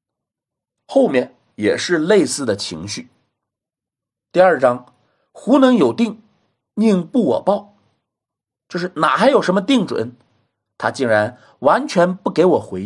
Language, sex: Chinese, male